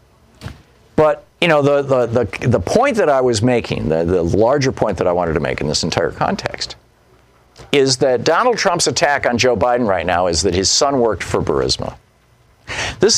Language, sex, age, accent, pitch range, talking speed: English, male, 50-69, American, 115-175 Hz, 195 wpm